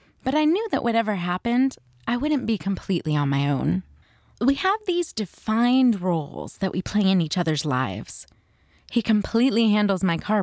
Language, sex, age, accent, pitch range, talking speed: English, female, 20-39, American, 170-245 Hz, 175 wpm